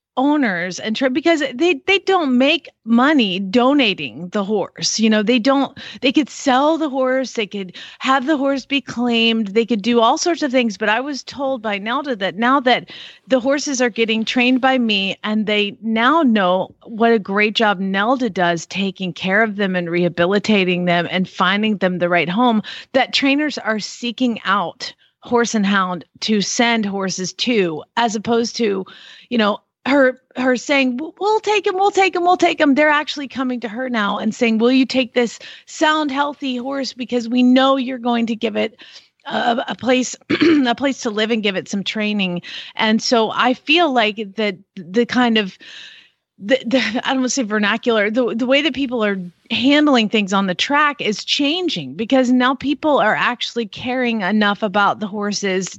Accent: American